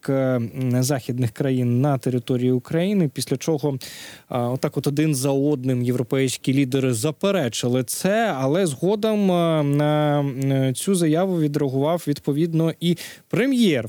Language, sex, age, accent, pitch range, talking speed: Ukrainian, male, 20-39, native, 125-160 Hz, 110 wpm